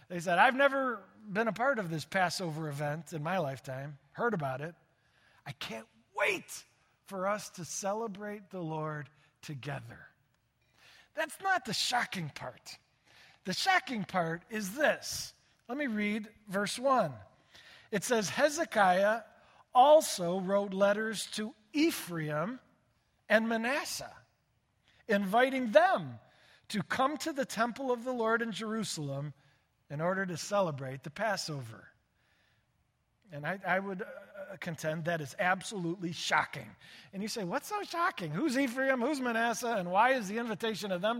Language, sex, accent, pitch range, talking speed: English, male, American, 165-235 Hz, 145 wpm